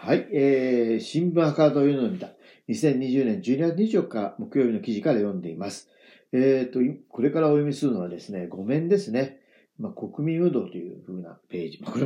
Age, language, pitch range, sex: 40-59, Japanese, 125-170 Hz, male